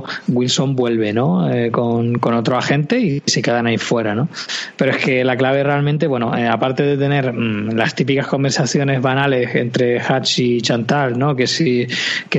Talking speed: 170 wpm